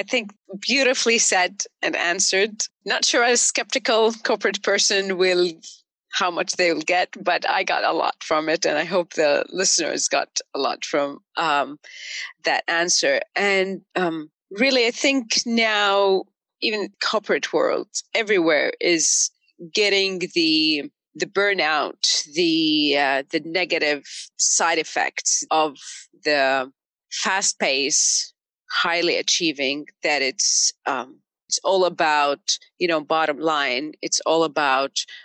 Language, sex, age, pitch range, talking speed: Arabic, female, 30-49, 160-255 Hz, 130 wpm